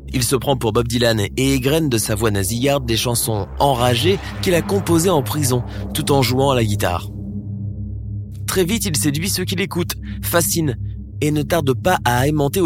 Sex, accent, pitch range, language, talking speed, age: male, French, 105-155 Hz, French, 190 wpm, 20-39